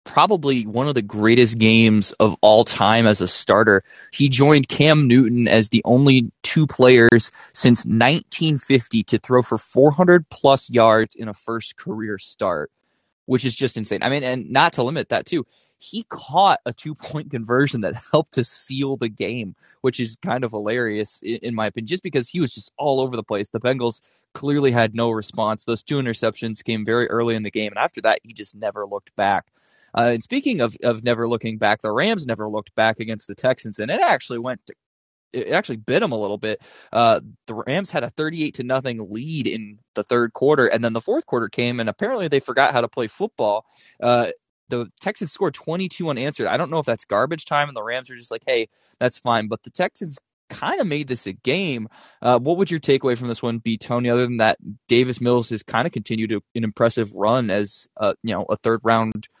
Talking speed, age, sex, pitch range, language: 215 wpm, 20-39, male, 110-135 Hz, English